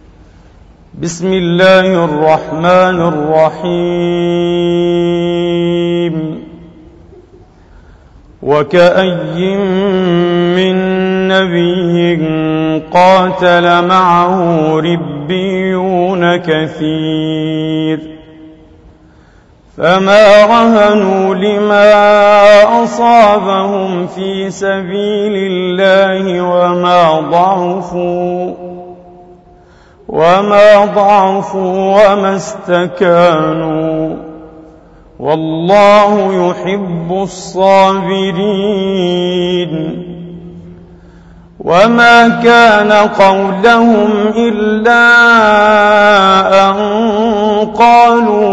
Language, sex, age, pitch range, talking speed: Arabic, male, 40-59, 170-195 Hz, 40 wpm